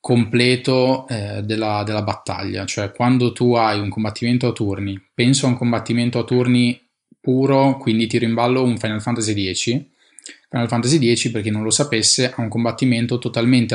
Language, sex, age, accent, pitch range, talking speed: Italian, male, 20-39, native, 105-120 Hz, 175 wpm